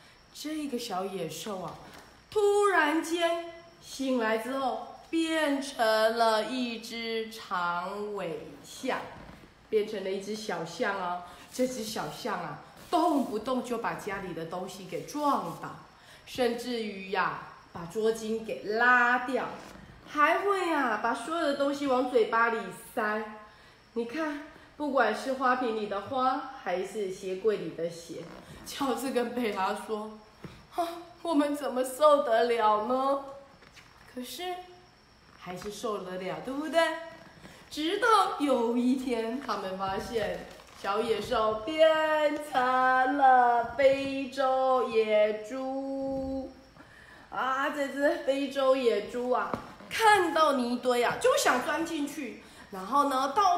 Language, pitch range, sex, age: Chinese, 220-295 Hz, female, 20-39